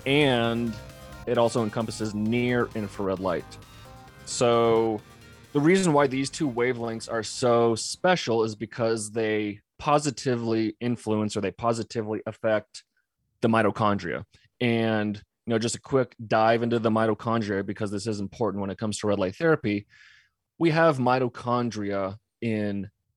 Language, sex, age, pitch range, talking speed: English, male, 30-49, 105-120 Hz, 135 wpm